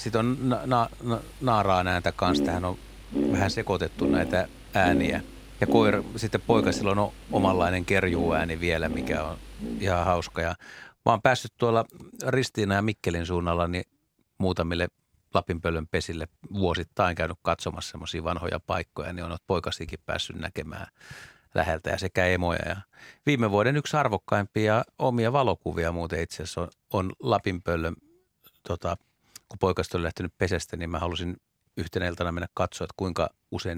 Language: Finnish